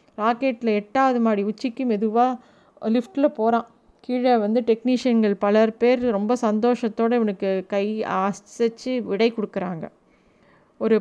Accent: native